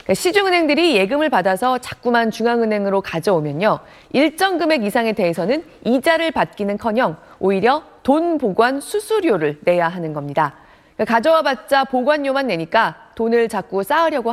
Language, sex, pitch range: Korean, female, 195-290 Hz